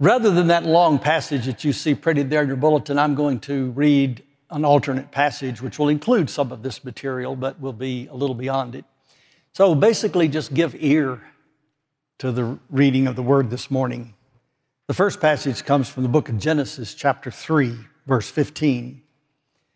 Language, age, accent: English, 60-79, American